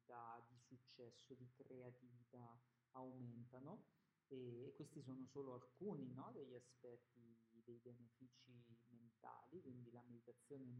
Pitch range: 125-140 Hz